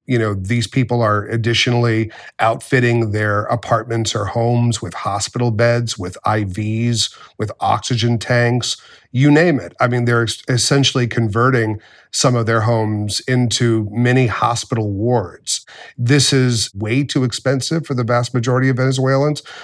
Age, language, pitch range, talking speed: 40-59, English, 115-130 Hz, 140 wpm